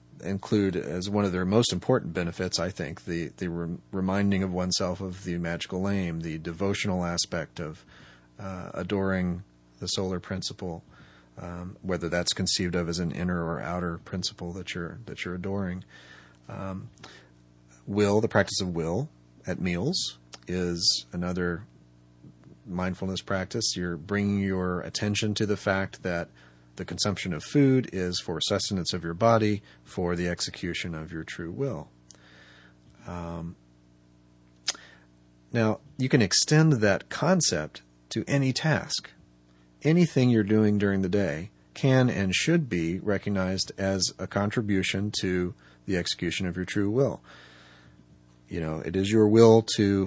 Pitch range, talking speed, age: 80-100 Hz, 145 wpm, 30-49